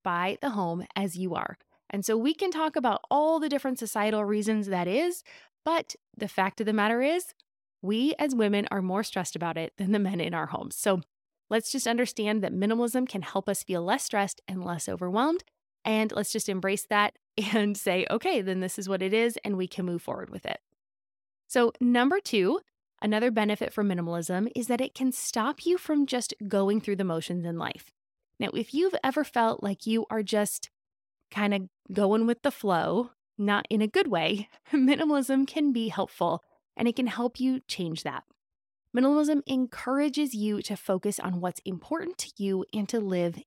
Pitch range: 190-260 Hz